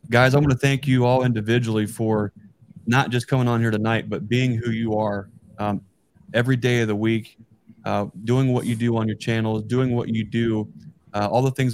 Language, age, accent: English, 20-39, American